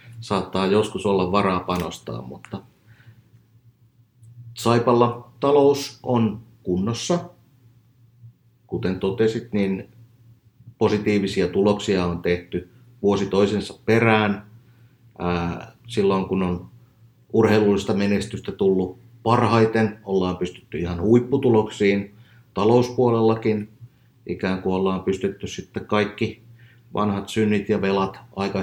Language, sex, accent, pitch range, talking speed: Finnish, male, native, 95-120 Hz, 90 wpm